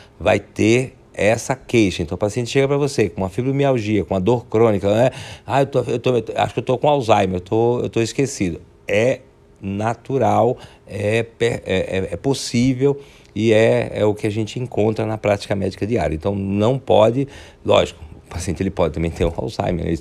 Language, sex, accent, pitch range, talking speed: Portuguese, male, Brazilian, 90-120 Hz, 195 wpm